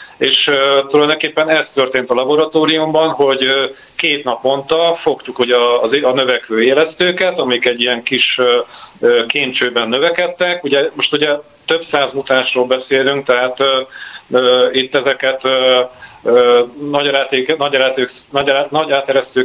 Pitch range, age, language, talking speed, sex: 125-150 Hz, 40-59, Hungarian, 120 wpm, male